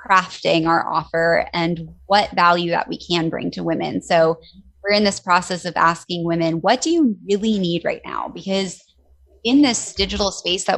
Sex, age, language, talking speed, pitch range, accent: female, 20-39, English, 185 wpm, 165-205 Hz, American